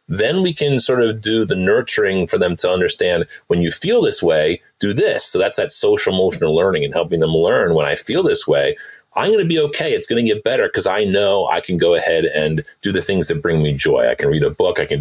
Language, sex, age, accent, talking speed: English, male, 30-49, American, 265 wpm